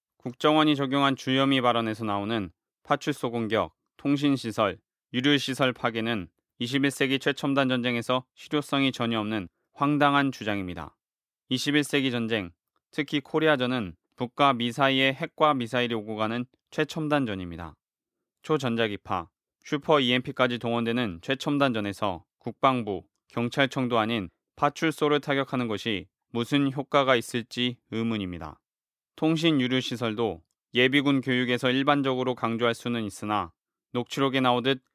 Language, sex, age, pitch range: Korean, male, 20-39, 115-140 Hz